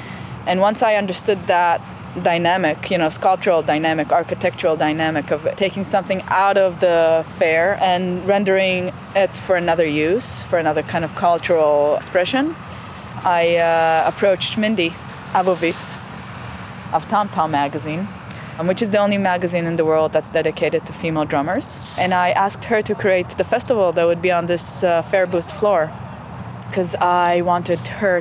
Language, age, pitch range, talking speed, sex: English, 20-39, 160-185 Hz, 155 wpm, female